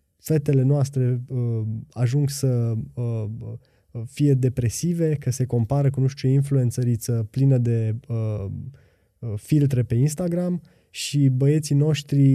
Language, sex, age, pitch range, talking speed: Romanian, male, 20-39, 120-145 Hz, 115 wpm